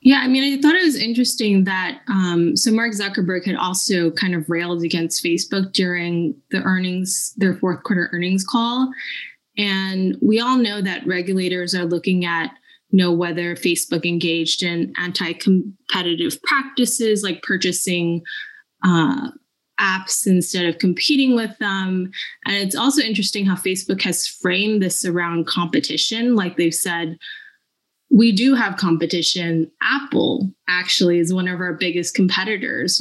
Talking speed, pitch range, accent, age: 145 wpm, 175-225 Hz, American, 20-39